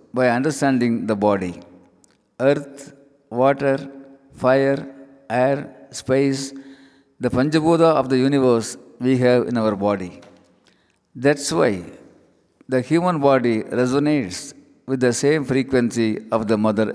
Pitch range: 110-140 Hz